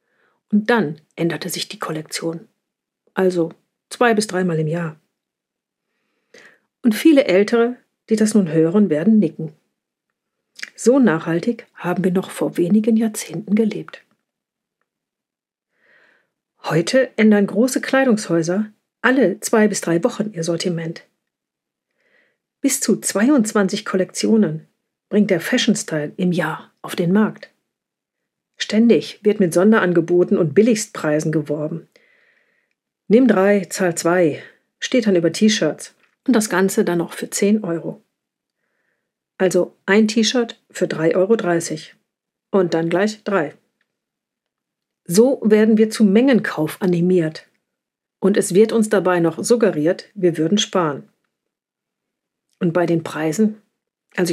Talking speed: 120 wpm